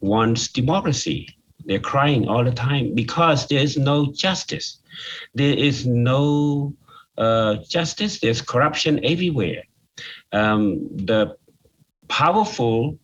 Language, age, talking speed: English, 50-69, 105 wpm